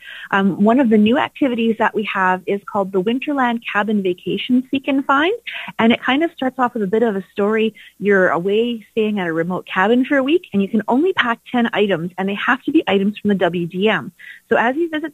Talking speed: 240 wpm